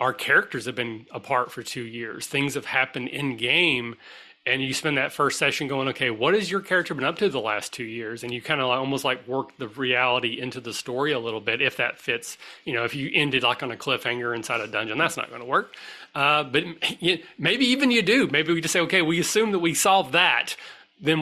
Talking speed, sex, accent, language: 245 wpm, male, American, English